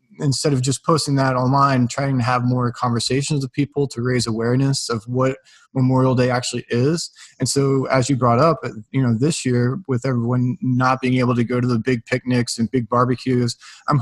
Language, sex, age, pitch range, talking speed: English, male, 20-39, 120-140 Hz, 200 wpm